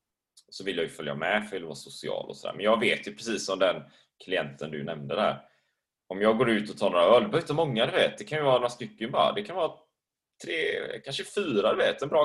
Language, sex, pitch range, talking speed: Swedish, male, 105-145 Hz, 245 wpm